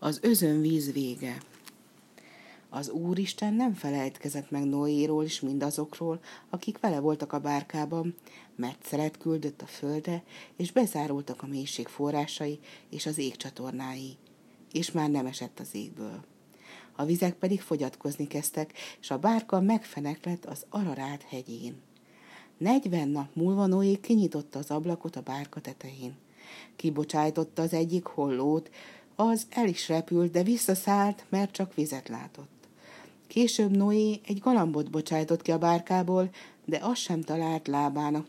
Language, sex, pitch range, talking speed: Hungarian, female, 145-185 Hz, 135 wpm